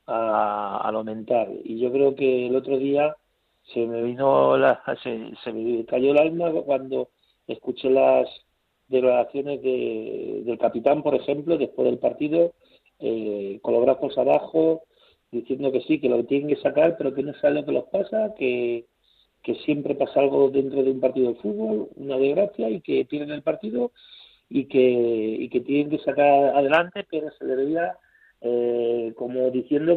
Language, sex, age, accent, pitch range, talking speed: Spanish, male, 50-69, Spanish, 125-160 Hz, 170 wpm